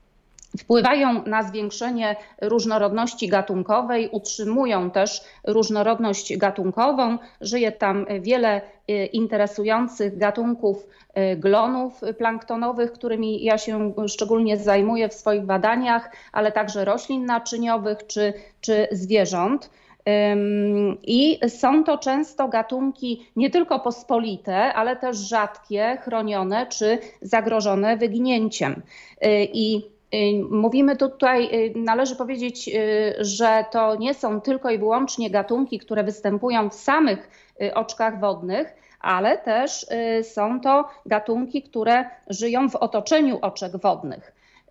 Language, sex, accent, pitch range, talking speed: Polish, female, native, 205-240 Hz, 100 wpm